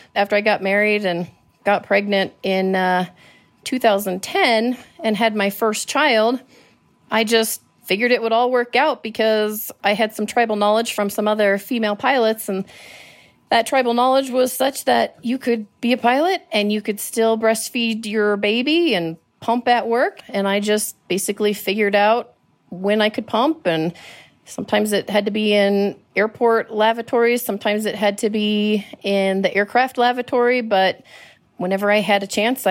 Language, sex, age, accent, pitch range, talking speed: English, female, 30-49, American, 200-230 Hz, 165 wpm